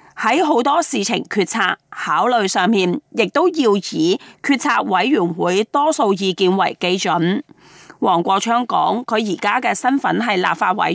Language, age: Chinese, 20-39